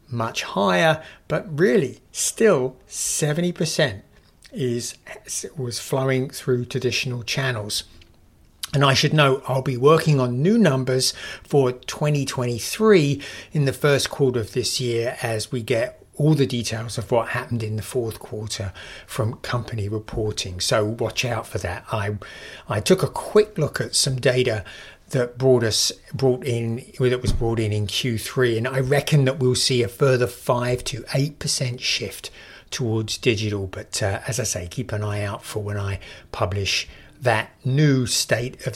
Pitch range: 105-140 Hz